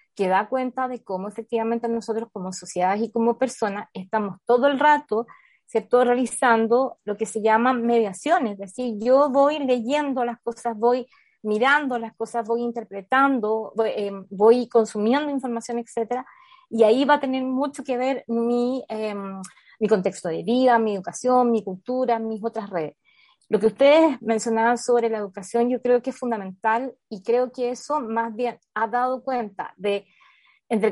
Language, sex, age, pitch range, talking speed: Spanish, female, 20-39, 215-250 Hz, 170 wpm